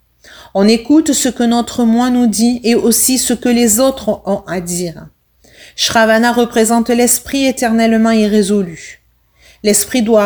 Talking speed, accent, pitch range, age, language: 140 wpm, French, 205-255 Hz, 40-59, French